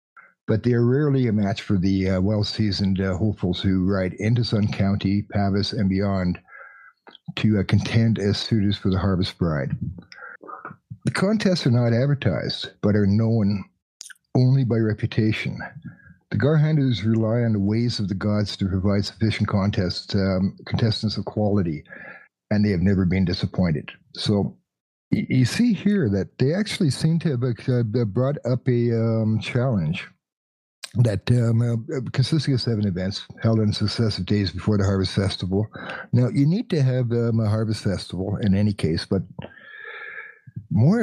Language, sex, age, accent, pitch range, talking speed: English, male, 50-69, American, 100-125 Hz, 155 wpm